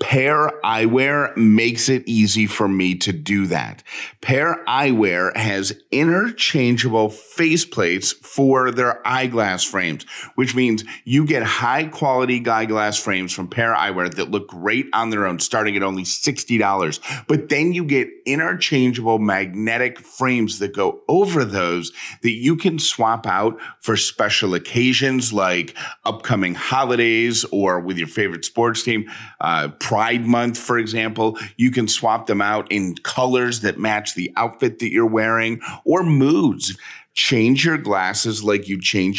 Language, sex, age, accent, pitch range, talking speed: English, male, 30-49, American, 100-125 Hz, 145 wpm